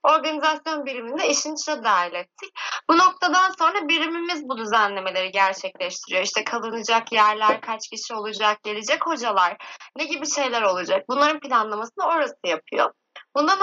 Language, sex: Turkish, female